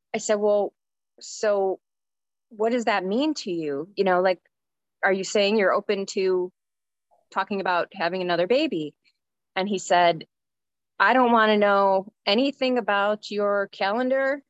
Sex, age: female, 20-39